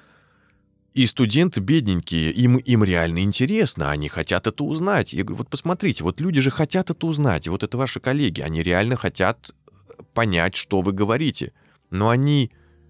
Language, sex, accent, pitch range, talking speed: Russian, male, native, 85-120 Hz, 160 wpm